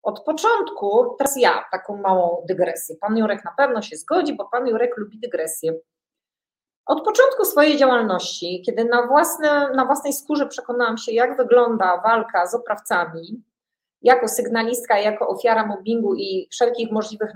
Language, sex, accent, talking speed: Polish, female, native, 145 wpm